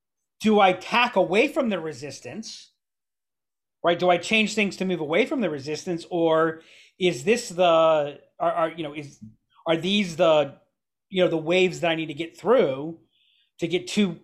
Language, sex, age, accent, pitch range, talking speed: English, male, 40-59, American, 160-195 Hz, 180 wpm